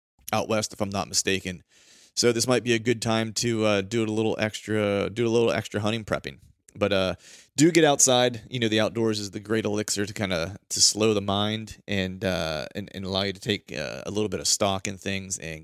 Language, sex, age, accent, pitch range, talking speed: English, male, 30-49, American, 95-115 Hz, 245 wpm